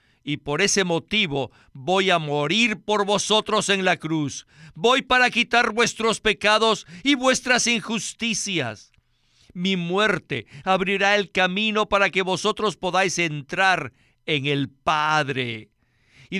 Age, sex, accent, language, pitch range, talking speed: 50-69, male, Mexican, Spanish, 160-220 Hz, 125 wpm